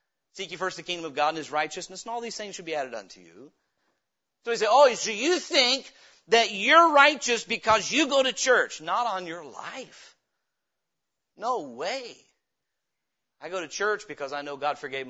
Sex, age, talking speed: male, 40-59, 195 wpm